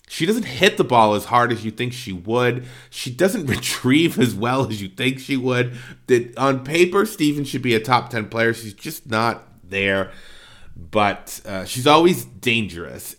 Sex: male